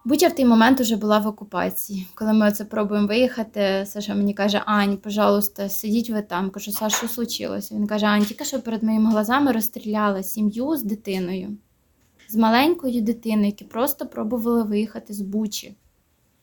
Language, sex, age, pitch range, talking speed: Ukrainian, female, 20-39, 205-235 Hz, 175 wpm